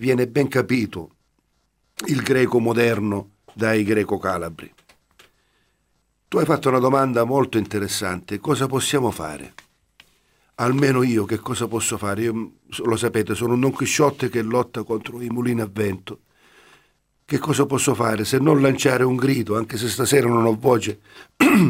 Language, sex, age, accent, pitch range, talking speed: Italian, male, 50-69, native, 110-140 Hz, 150 wpm